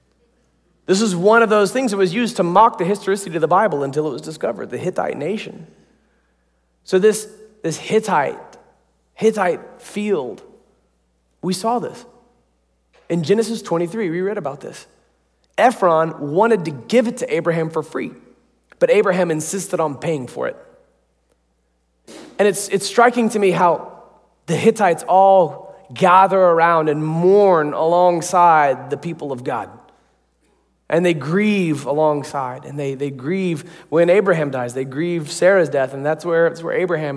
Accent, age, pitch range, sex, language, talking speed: American, 30-49, 155-200 Hz, male, English, 155 wpm